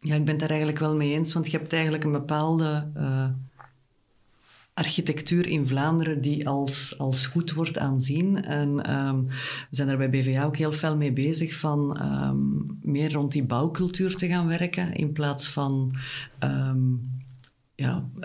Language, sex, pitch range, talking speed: Dutch, female, 130-155 Hz, 160 wpm